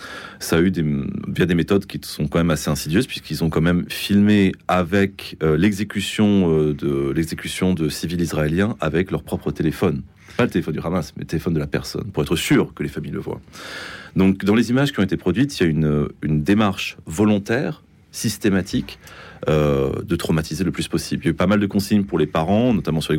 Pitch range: 80-100 Hz